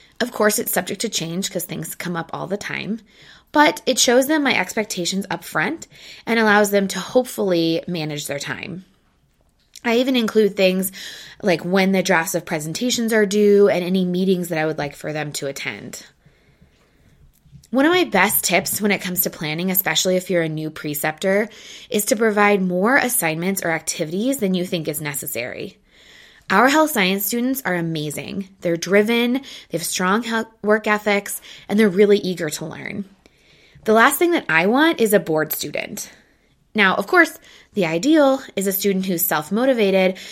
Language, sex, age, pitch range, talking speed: English, female, 20-39, 170-225 Hz, 175 wpm